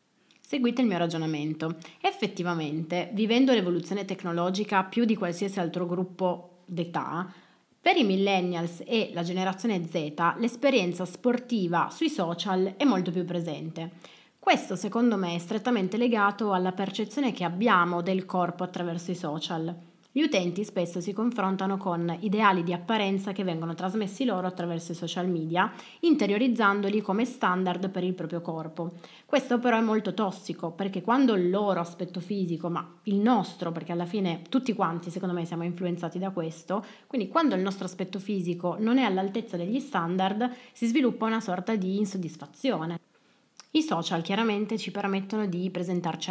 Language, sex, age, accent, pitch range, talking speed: Italian, female, 30-49, native, 175-215 Hz, 150 wpm